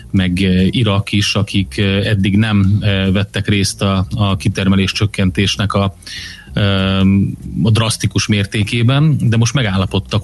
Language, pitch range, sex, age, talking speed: Hungarian, 95-110 Hz, male, 30-49, 105 wpm